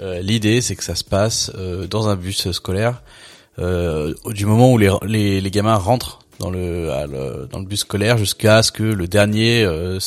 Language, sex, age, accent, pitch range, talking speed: French, male, 20-39, French, 95-110 Hz, 205 wpm